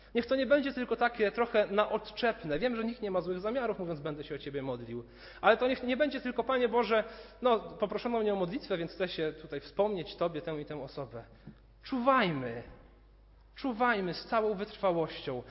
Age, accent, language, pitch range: 40-59, native, Polish, 125-210 Hz